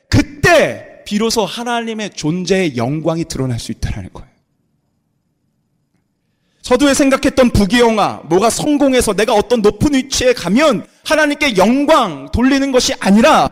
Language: Korean